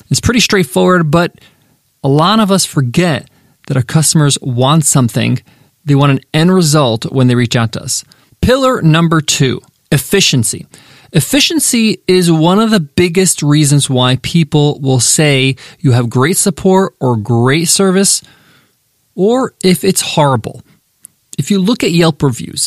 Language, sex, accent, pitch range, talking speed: English, male, American, 135-185 Hz, 150 wpm